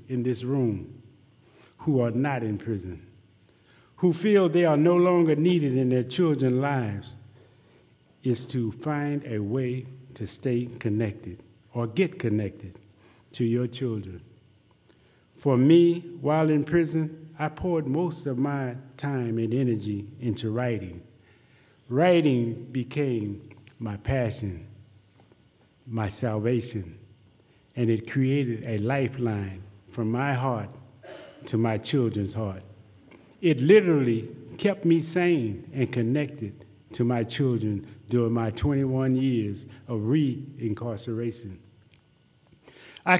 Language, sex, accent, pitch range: English, male, American, 110-140 Hz